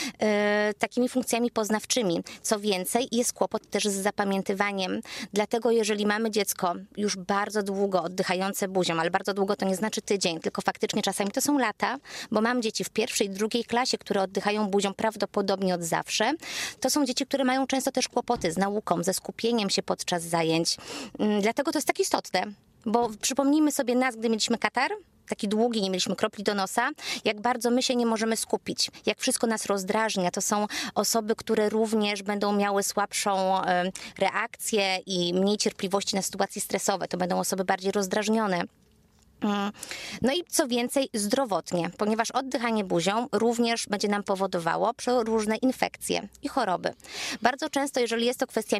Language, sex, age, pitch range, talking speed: Polish, female, 20-39, 195-240 Hz, 165 wpm